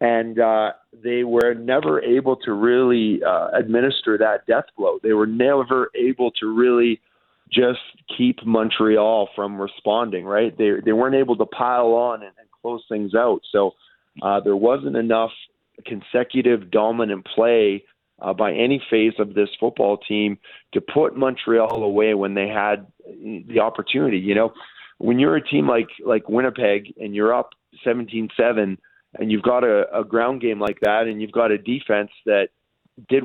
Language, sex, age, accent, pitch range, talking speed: English, male, 40-59, American, 105-125 Hz, 165 wpm